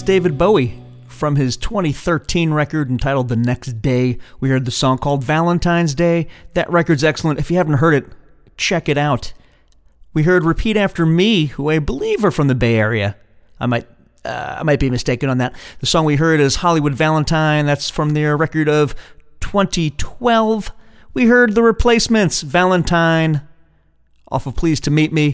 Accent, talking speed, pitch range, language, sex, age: American, 175 wpm, 130-175 Hz, English, male, 40-59